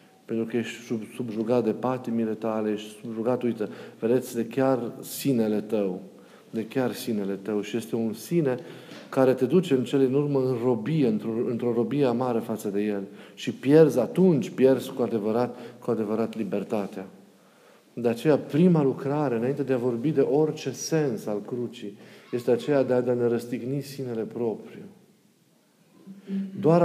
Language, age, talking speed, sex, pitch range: Romanian, 40-59, 165 wpm, male, 115-140 Hz